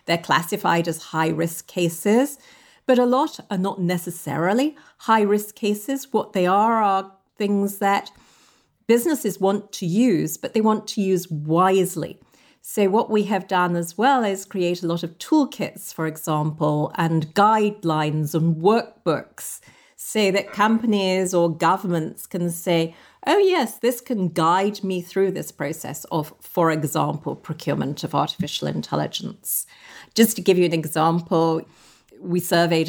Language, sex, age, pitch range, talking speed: English, female, 40-59, 165-205 Hz, 145 wpm